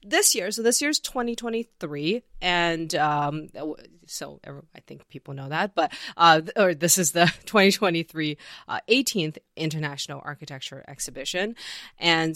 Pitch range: 150-190 Hz